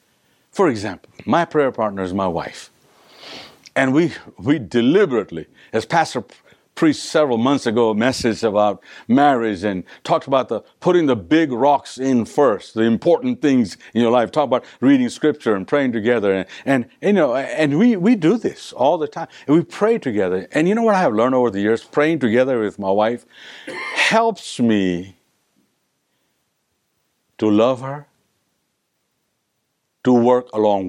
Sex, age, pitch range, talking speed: male, 60-79, 110-155 Hz, 160 wpm